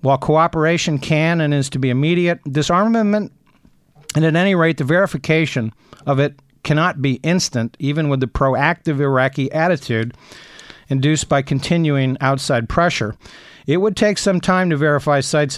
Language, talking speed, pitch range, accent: English, 150 wpm, 130-165 Hz, American